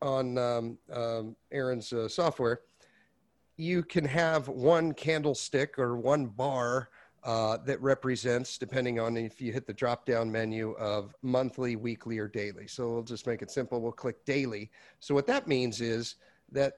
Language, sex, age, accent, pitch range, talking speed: English, male, 40-59, American, 120-140 Hz, 165 wpm